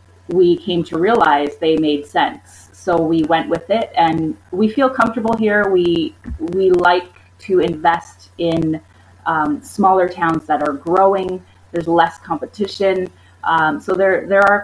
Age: 30-49